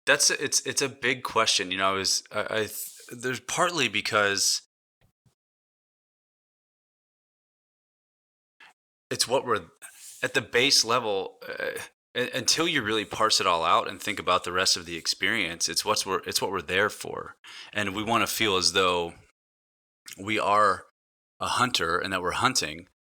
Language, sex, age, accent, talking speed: English, male, 20-39, American, 160 wpm